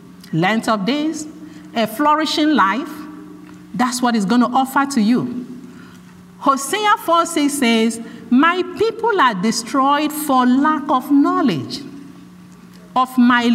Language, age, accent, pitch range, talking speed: English, 50-69, Nigerian, 220-295 Hz, 120 wpm